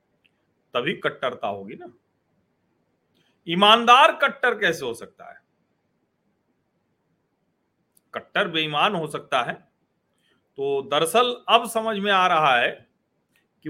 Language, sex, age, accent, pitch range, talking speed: Hindi, male, 40-59, native, 140-195 Hz, 105 wpm